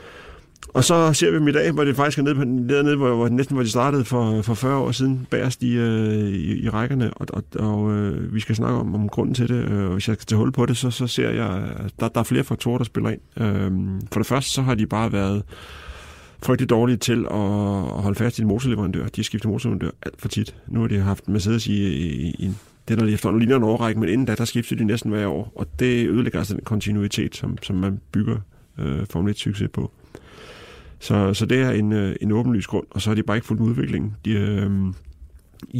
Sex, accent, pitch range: male, native, 100-120 Hz